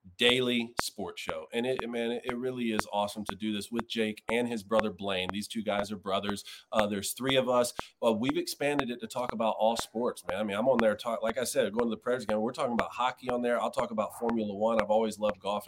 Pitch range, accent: 105-120 Hz, American